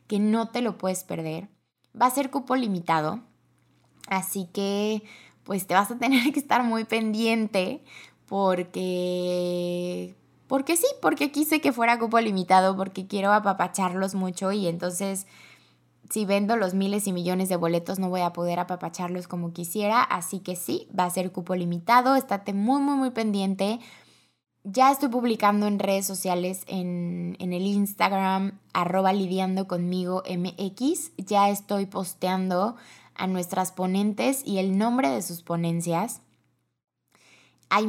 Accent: Mexican